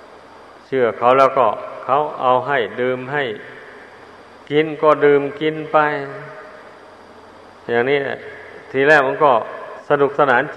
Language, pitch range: Thai, 130-155 Hz